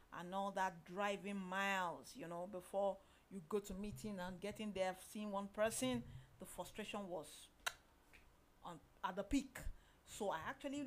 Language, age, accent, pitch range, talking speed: English, 40-59, Nigerian, 180-235 Hz, 155 wpm